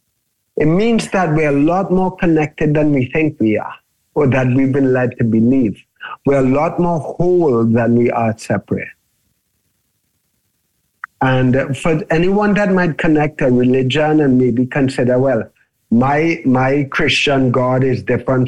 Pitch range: 125-165 Hz